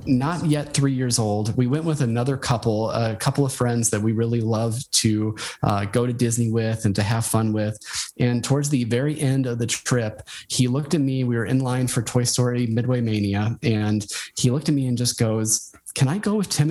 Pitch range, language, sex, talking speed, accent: 115-140 Hz, English, male, 225 wpm, American